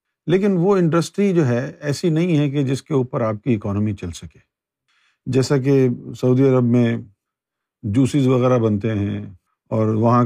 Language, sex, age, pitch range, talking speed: Urdu, male, 50-69, 115-150 Hz, 165 wpm